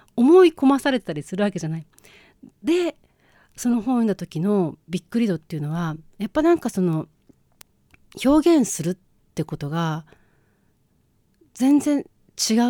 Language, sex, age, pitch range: Japanese, female, 40-59, 160-235 Hz